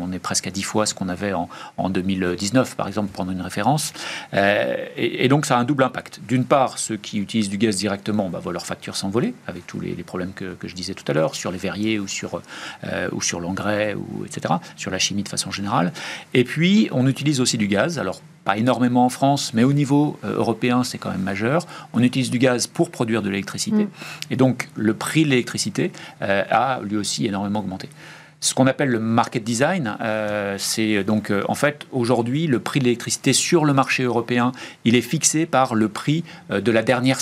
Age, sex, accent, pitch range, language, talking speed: 40-59, male, French, 105-140 Hz, French, 225 wpm